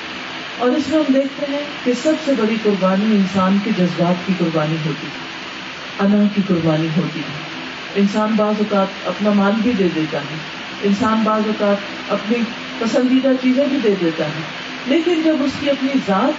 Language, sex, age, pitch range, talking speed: Urdu, female, 40-59, 185-255 Hz, 175 wpm